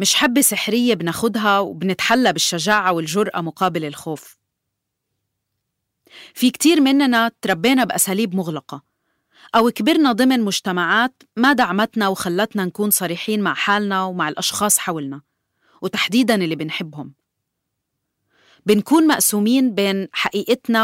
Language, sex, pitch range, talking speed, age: Arabic, female, 175-225 Hz, 105 wpm, 30-49